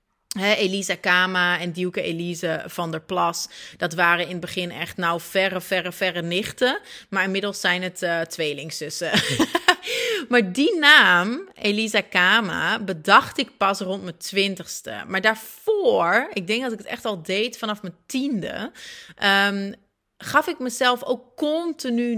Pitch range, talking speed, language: 185-250 Hz, 150 wpm, Dutch